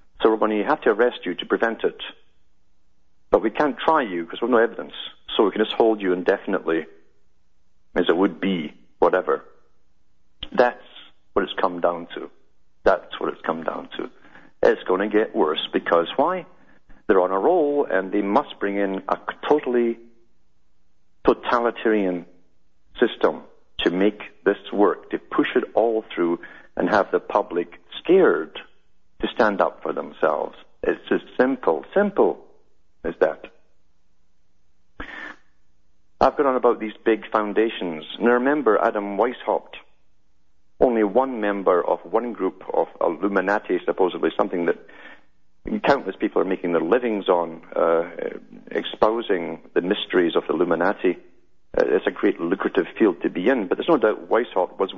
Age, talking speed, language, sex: 50-69, 155 wpm, English, male